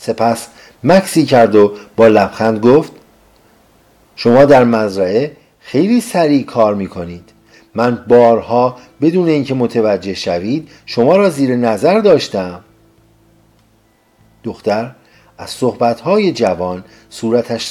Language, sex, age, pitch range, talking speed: Persian, male, 50-69, 100-130 Hz, 100 wpm